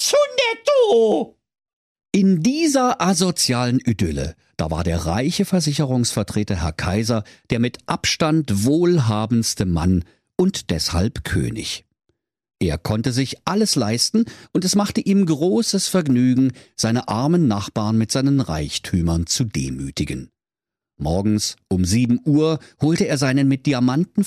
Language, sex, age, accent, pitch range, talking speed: German, male, 50-69, German, 100-160 Hz, 115 wpm